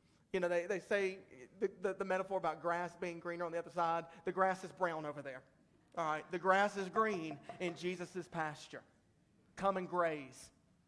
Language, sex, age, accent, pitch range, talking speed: English, male, 40-59, American, 150-175 Hz, 195 wpm